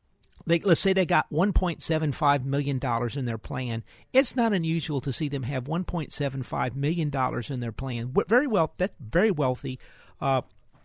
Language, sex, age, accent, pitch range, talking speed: English, male, 50-69, American, 130-175 Hz, 155 wpm